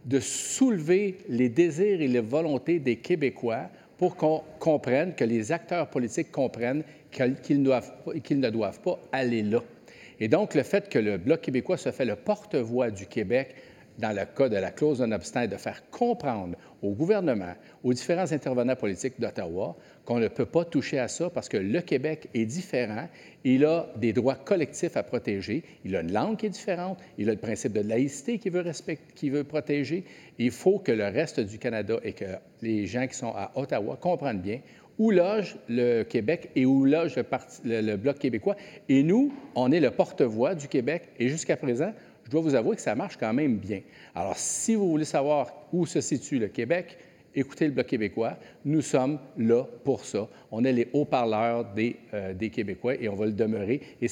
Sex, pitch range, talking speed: male, 120-170 Hz, 195 wpm